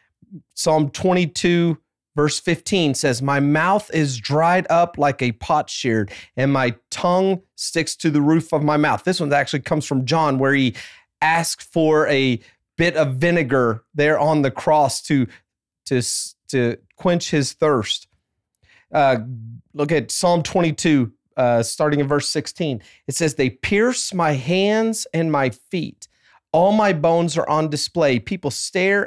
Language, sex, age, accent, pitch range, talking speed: English, male, 30-49, American, 130-170 Hz, 155 wpm